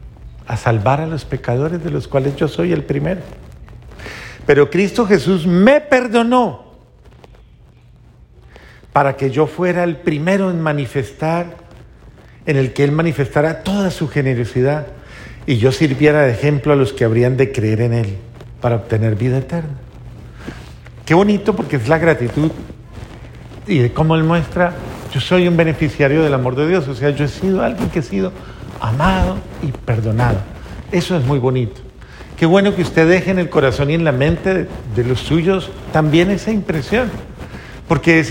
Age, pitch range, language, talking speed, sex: 50-69, 130-175 Hz, Spanish, 165 wpm, male